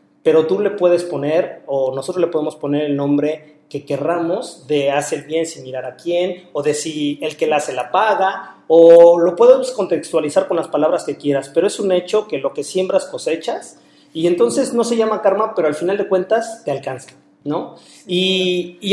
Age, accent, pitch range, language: 40-59, Mexican, 150-195 Hz, Spanish